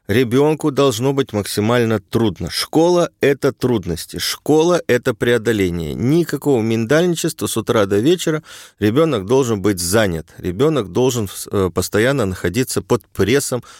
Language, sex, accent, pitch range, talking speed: Russian, male, native, 100-140 Hz, 115 wpm